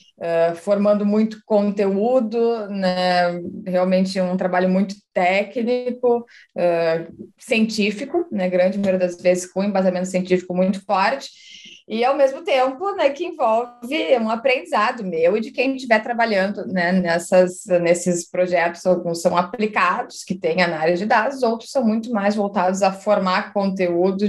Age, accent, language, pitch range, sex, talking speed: 20-39, Brazilian, Portuguese, 180-220 Hz, female, 135 wpm